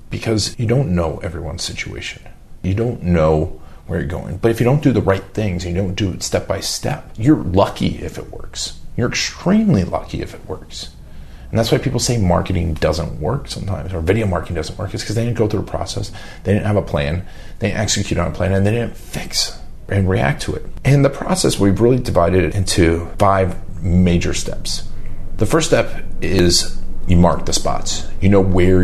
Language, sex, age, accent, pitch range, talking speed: English, male, 40-59, American, 85-110 Hz, 210 wpm